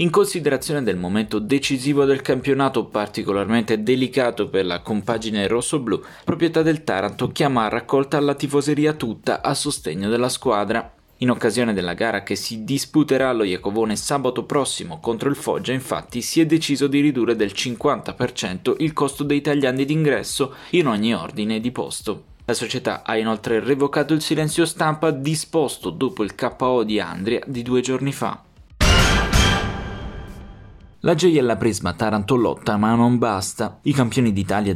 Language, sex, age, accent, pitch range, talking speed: Italian, male, 20-39, native, 105-135 Hz, 150 wpm